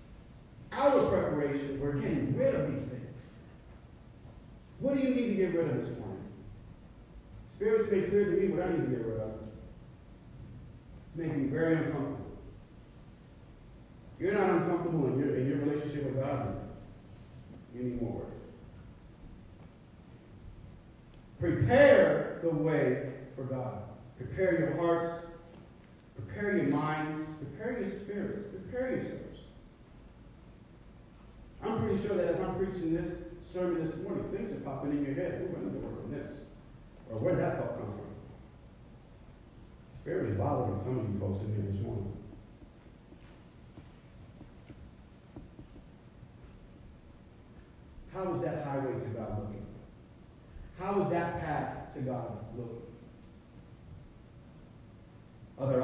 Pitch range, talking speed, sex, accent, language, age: 115-170 Hz, 125 wpm, male, American, English, 40-59